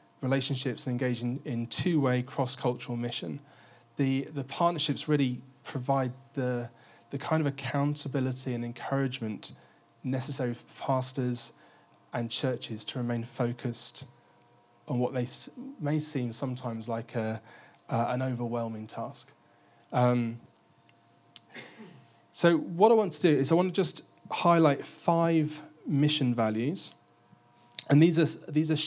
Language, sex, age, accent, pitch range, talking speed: English, male, 30-49, British, 120-145 Hz, 125 wpm